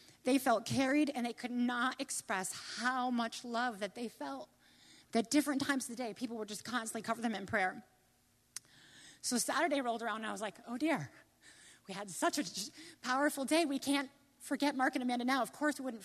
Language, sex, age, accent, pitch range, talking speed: English, female, 30-49, American, 235-295 Hz, 205 wpm